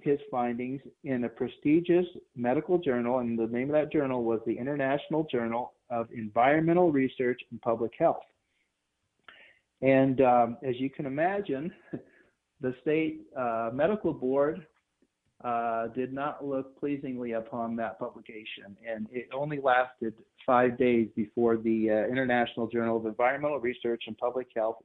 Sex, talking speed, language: male, 140 wpm, English